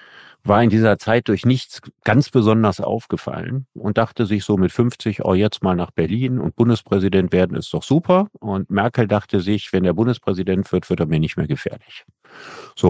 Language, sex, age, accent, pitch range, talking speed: German, male, 50-69, German, 90-110 Hz, 190 wpm